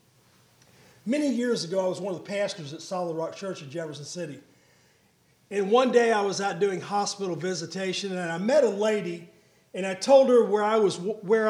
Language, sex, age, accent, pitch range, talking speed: English, male, 40-59, American, 180-240 Hz, 200 wpm